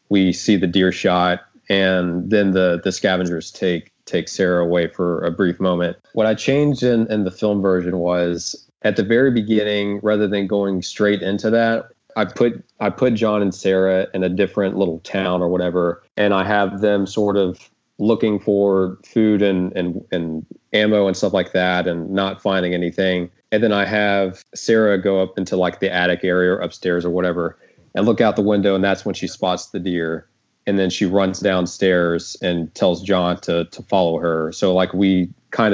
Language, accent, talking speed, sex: English, American, 195 wpm, male